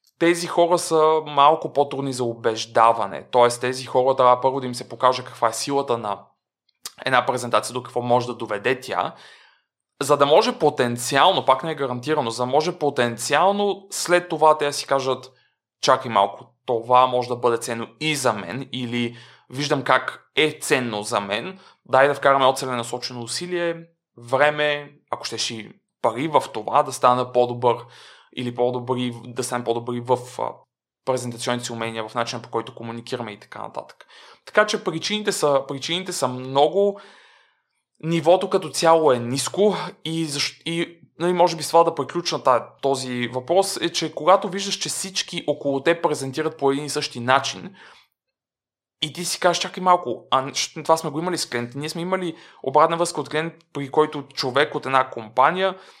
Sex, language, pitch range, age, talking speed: male, Bulgarian, 125-165 Hz, 20-39, 175 wpm